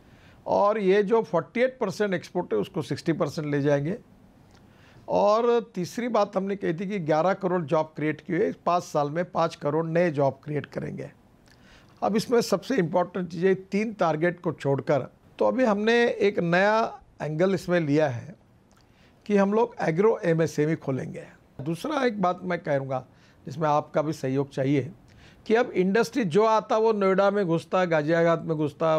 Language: Hindi